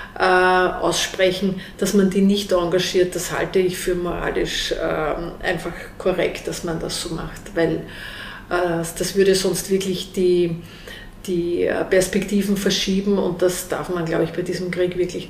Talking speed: 155 wpm